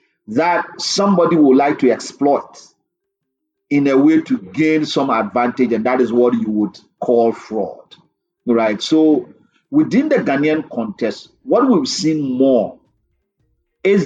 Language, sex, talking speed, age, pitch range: English, male, 135 wpm, 50-69, 125-210 Hz